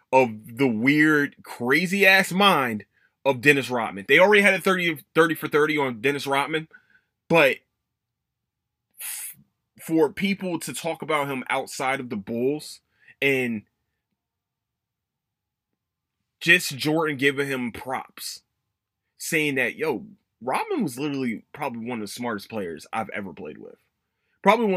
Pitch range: 140-195 Hz